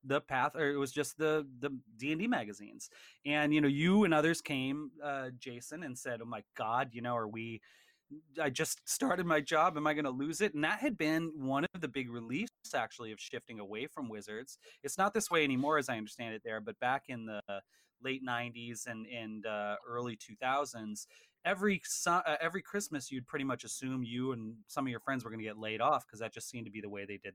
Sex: male